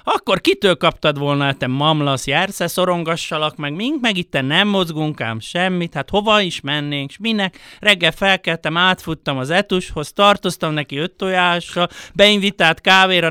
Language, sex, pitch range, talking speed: Hungarian, male, 155-185 Hz, 150 wpm